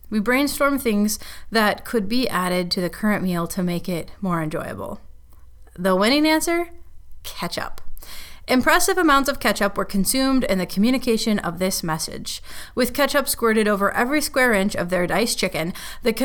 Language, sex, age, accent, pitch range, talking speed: English, female, 30-49, American, 190-255 Hz, 165 wpm